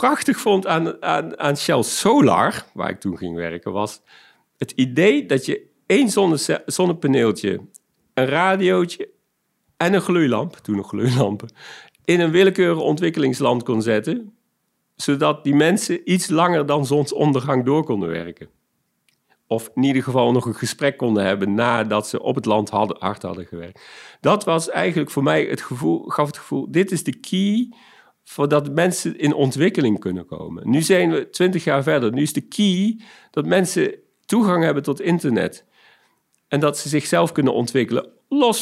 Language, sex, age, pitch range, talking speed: Dutch, male, 50-69, 125-185 Hz, 160 wpm